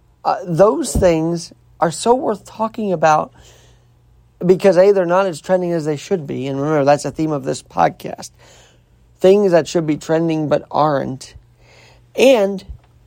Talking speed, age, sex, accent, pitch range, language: 160 wpm, 40-59, male, American, 160-225 Hz, English